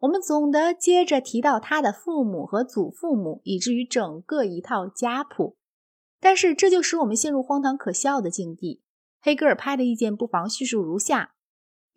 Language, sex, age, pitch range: Chinese, female, 30-49, 200-290 Hz